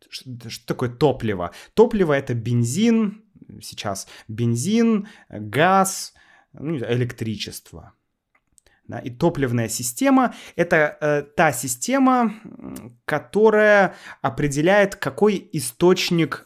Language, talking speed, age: Russian, 75 wpm, 20-39